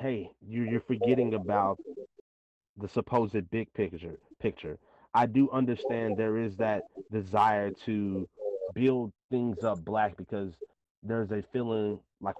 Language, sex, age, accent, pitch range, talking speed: English, male, 30-49, American, 100-120 Hz, 125 wpm